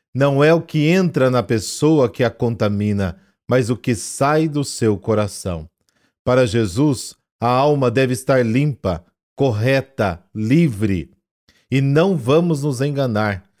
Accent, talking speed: Brazilian, 135 wpm